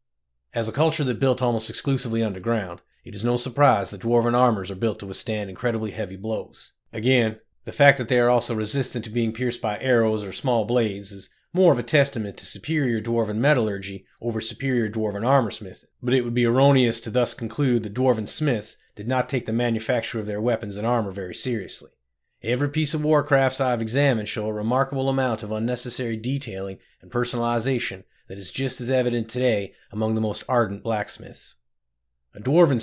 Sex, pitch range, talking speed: male, 110-130 Hz, 190 wpm